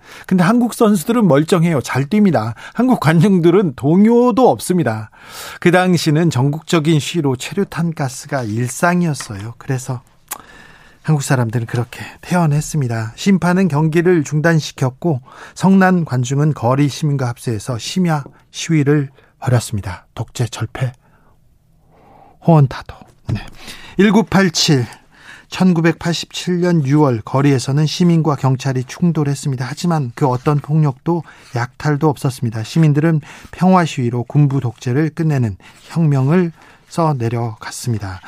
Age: 40-59